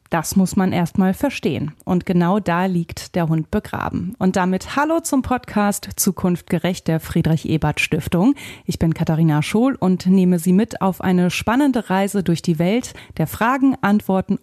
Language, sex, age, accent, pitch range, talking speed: German, female, 30-49, German, 165-215 Hz, 160 wpm